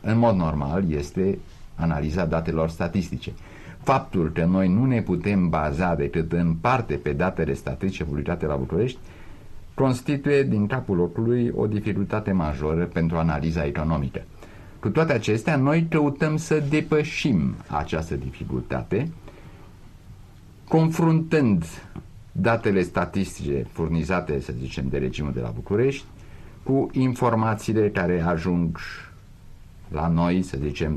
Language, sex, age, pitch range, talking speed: Romanian, male, 50-69, 80-110 Hz, 120 wpm